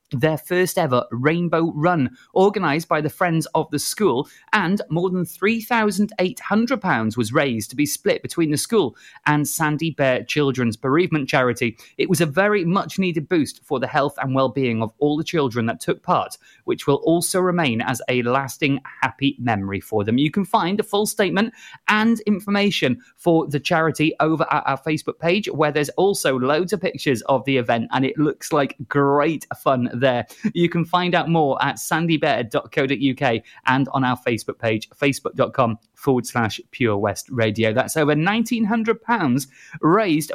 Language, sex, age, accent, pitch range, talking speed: English, male, 30-49, British, 130-195 Hz, 170 wpm